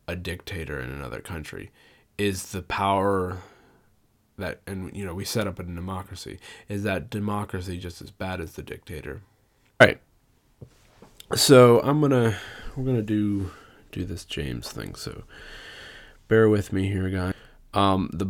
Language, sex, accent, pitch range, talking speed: English, male, American, 90-105 Hz, 150 wpm